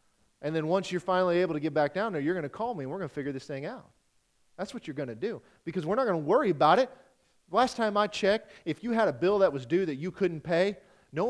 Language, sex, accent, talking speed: English, male, American, 290 wpm